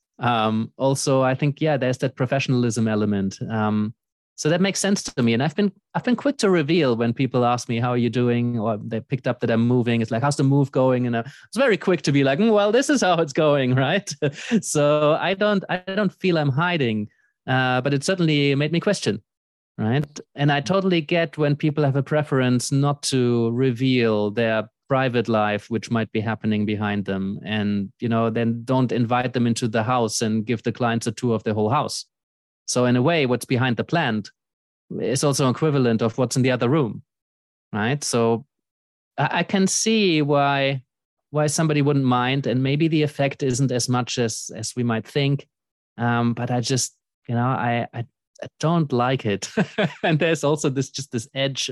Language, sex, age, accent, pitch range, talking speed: English, male, 30-49, German, 115-150 Hz, 205 wpm